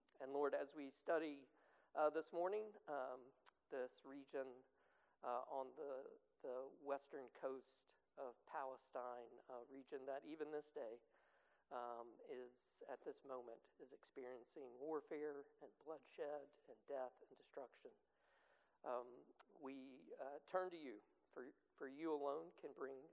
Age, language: 50-69, English